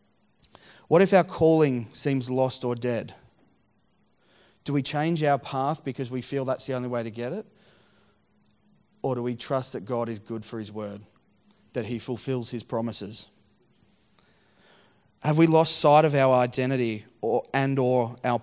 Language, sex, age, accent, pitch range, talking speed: English, male, 30-49, Australian, 120-140 Hz, 165 wpm